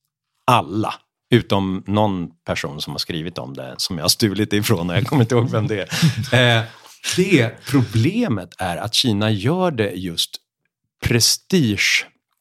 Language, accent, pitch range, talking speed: English, Swedish, 95-125 Hz, 145 wpm